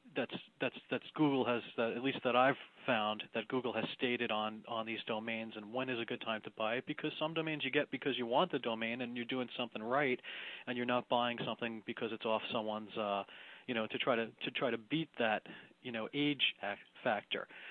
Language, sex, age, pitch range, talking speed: English, male, 30-49, 115-135 Hz, 225 wpm